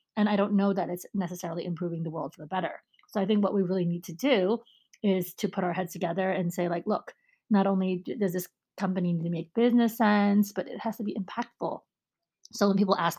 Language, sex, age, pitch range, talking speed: English, female, 30-49, 180-215 Hz, 235 wpm